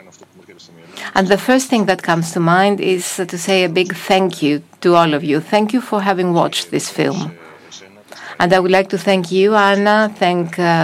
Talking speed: 195 wpm